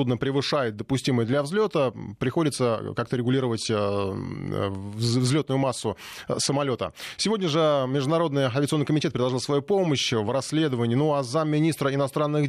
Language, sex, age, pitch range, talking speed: Russian, male, 20-39, 125-155 Hz, 115 wpm